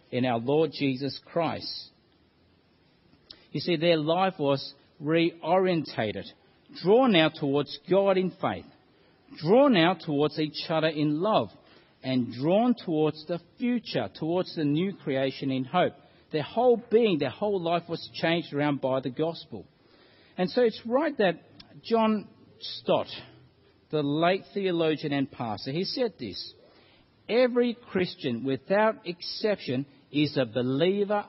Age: 50-69